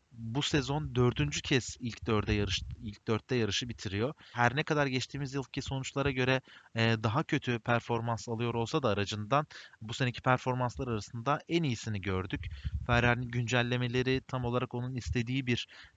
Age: 30-49